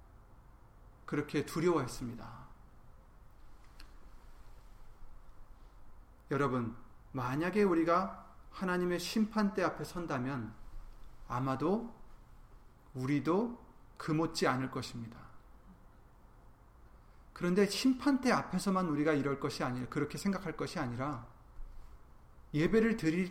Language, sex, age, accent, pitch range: Korean, male, 40-59, native, 125-200 Hz